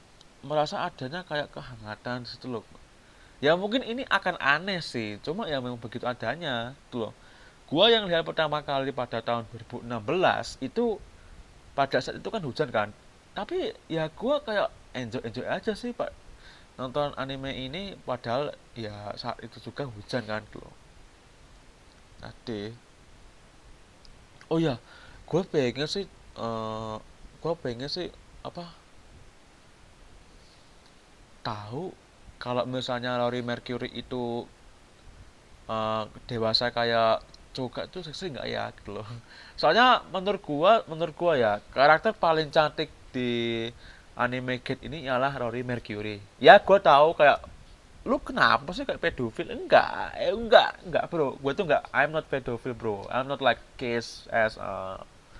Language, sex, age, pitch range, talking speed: Indonesian, male, 30-49, 115-160 Hz, 130 wpm